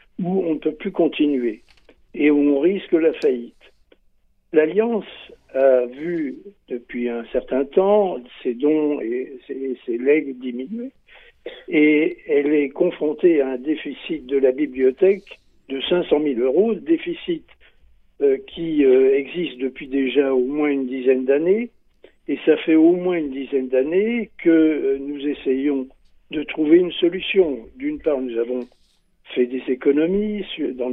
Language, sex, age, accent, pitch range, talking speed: French, male, 60-79, French, 135-205 Hz, 140 wpm